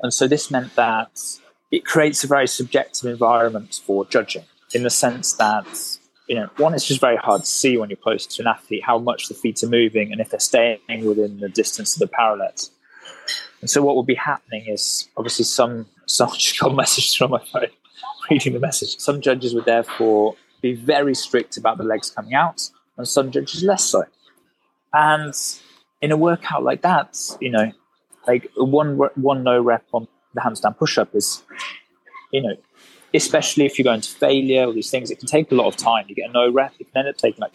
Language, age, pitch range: English, 20-39, 110-140 Hz